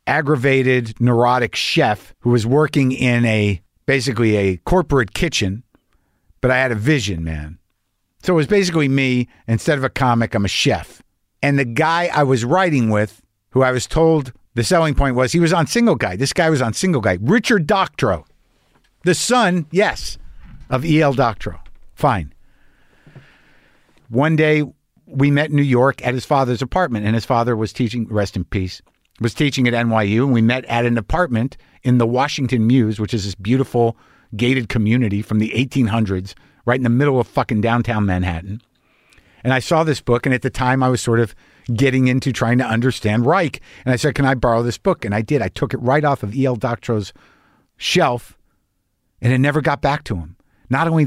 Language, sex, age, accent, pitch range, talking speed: English, male, 50-69, American, 110-140 Hz, 190 wpm